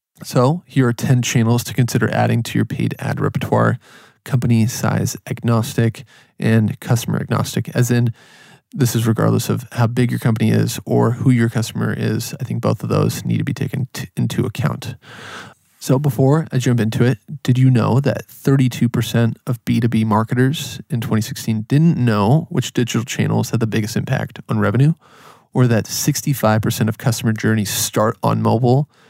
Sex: male